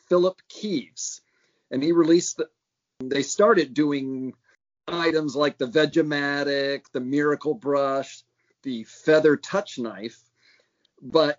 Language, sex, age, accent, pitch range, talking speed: English, male, 40-59, American, 130-175 Hz, 110 wpm